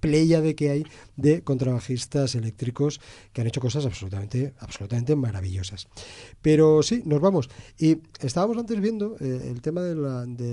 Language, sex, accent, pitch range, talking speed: Spanish, male, Spanish, 105-140 Hz, 160 wpm